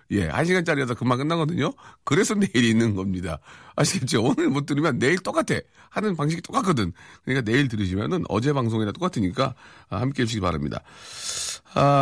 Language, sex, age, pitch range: Korean, male, 40-59, 100-165 Hz